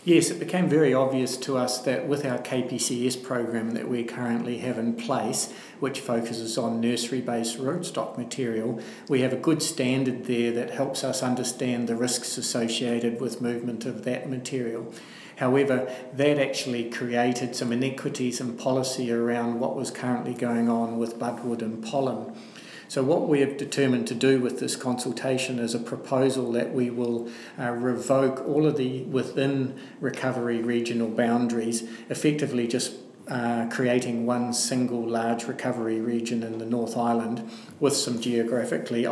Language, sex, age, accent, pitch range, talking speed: English, male, 50-69, Australian, 115-130 Hz, 155 wpm